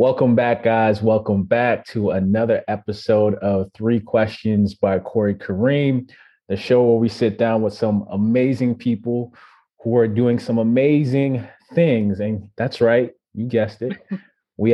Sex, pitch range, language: male, 105-130 Hz, English